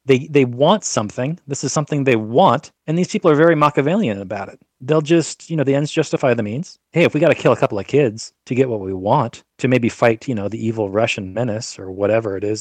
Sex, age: male, 30-49